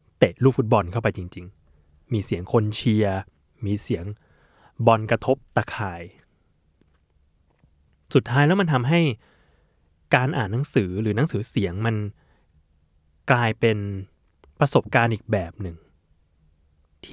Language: Thai